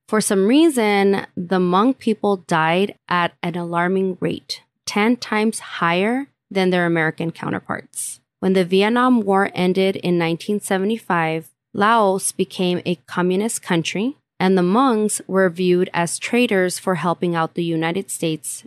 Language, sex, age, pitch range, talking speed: English, female, 20-39, 170-215 Hz, 140 wpm